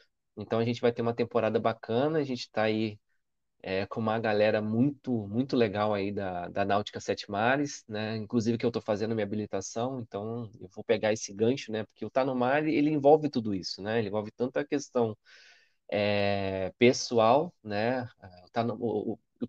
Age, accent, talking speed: 20-39, Brazilian, 195 wpm